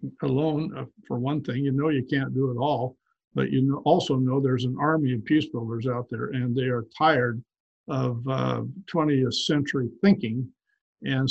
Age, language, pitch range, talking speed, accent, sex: 60-79, English, 130-150 Hz, 175 wpm, American, male